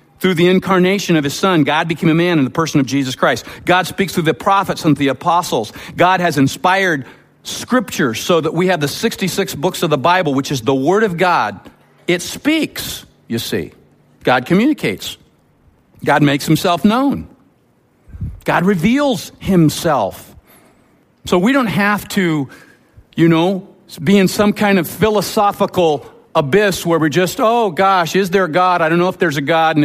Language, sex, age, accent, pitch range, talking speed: English, male, 50-69, American, 140-185 Hz, 175 wpm